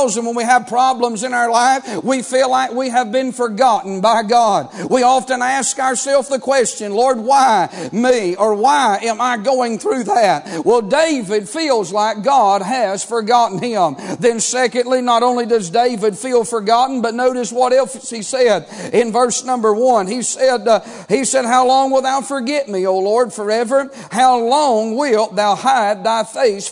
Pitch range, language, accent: 230-270 Hz, English, American